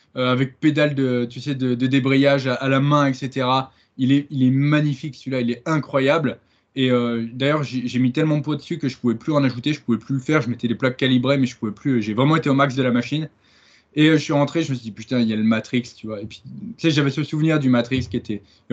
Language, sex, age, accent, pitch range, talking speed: French, male, 20-39, French, 125-150 Hz, 300 wpm